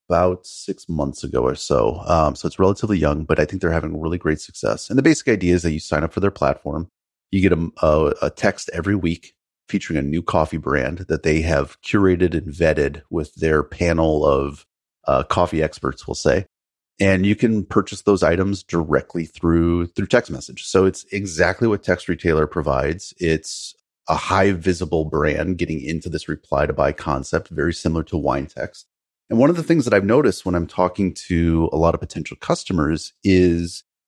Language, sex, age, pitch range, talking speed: English, male, 30-49, 80-95 Hz, 195 wpm